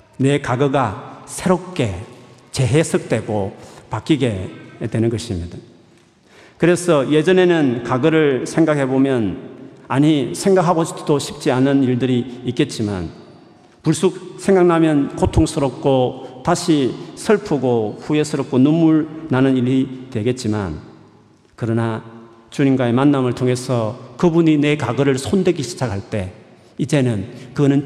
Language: Korean